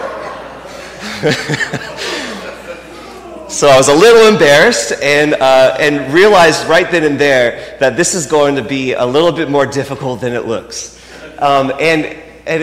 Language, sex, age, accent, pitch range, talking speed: English, male, 30-49, American, 130-175 Hz, 145 wpm